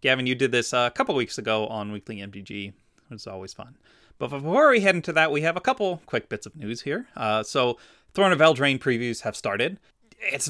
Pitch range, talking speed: 105-140 Hz, 225 wpm